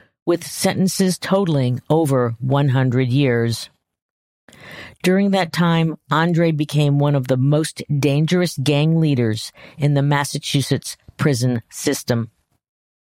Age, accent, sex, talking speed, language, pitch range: 50-69, American, female, 105 wpm, English, 135-180 Hz